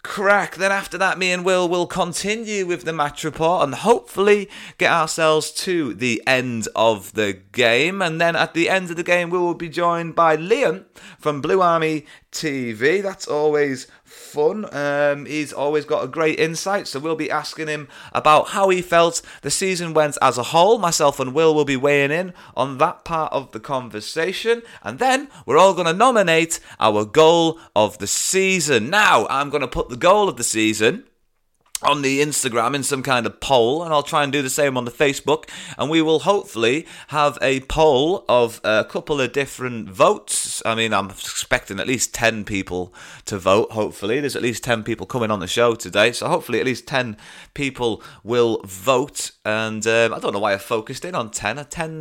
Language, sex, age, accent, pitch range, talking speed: English, male, 30-49, British, 120-170 Hz, 200 wpm